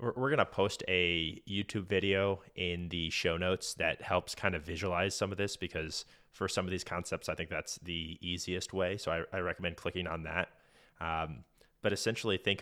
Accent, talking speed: American, 200 wpm